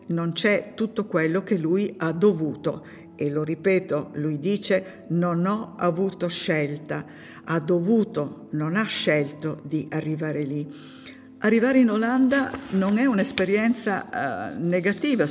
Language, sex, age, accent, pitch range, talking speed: Italian, female, 50-69, native, 155-195 Hz, 125 wpm